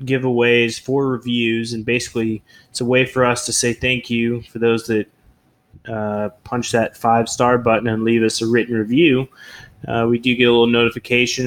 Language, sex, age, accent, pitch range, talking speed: English, male, 20-39, American, 110-125 Hz, 190 wpm